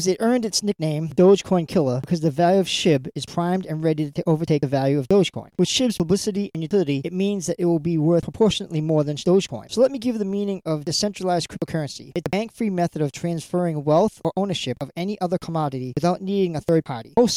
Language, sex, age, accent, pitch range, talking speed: English, male, 40-59, American, 150-185 Hz, 225 wpm